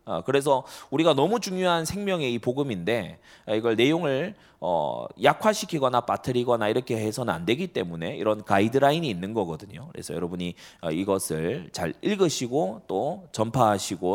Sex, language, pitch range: male, Korean, 100-140 Hz